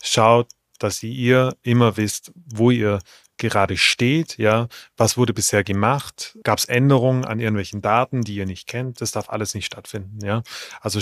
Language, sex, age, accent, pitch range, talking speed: German, male, 30-49, German, 105-125 Hz, 170 wpm